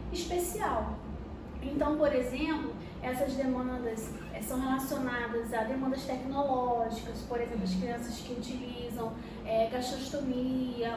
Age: 20-39